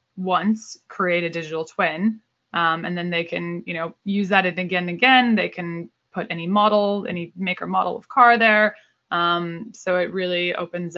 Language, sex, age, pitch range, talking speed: English, female, 20-39, 160-185 Hz, 180 wpm